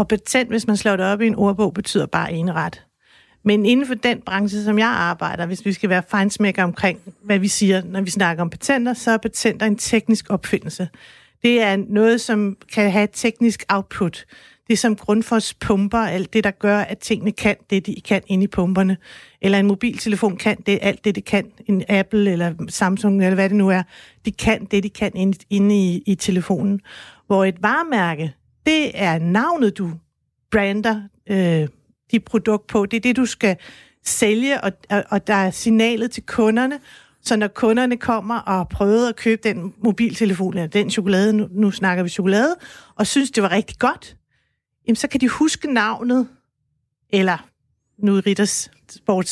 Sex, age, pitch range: female, 60-79, 195-225 Hz